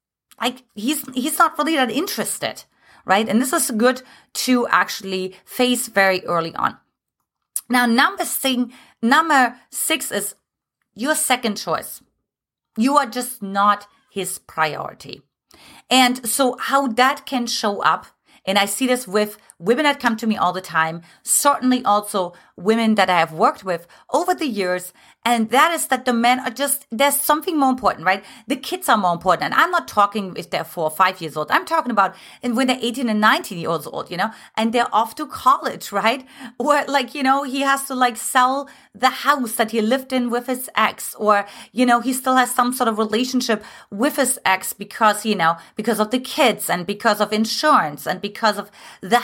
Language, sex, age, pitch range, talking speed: English, female, 30-49, 210-275 Hz, 190 wpm